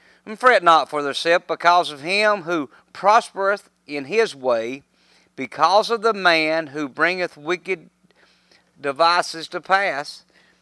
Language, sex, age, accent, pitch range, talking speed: English, male, 50-69, American, 115-180 Hz, 130 wpm